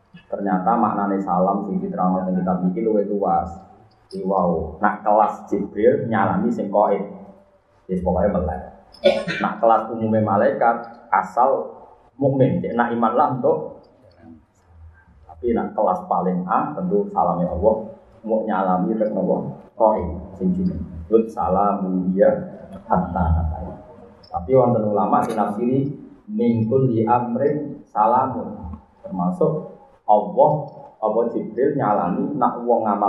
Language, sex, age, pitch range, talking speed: Malay, male, 30-49, 95-150 Hz, 120 wpm